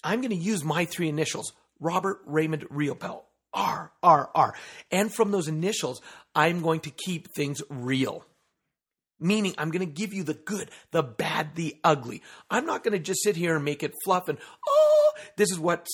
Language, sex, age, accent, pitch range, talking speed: English, male, 40-59, American, 140-190 Hz, 195 wpm